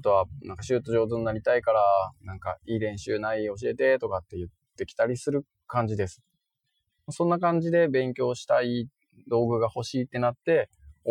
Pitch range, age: 90-140 Hz, 20-39